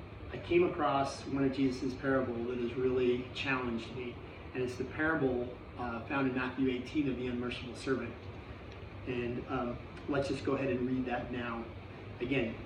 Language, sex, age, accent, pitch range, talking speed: English, male, 40-59, American, 115-135 Hz, 170 wpm